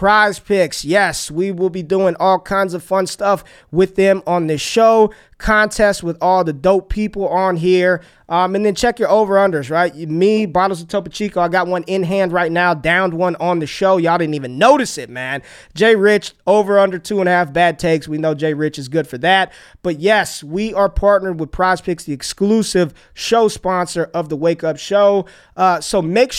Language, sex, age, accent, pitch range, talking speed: English, male, 20-39, American, 165-200 Hz, 210 wpm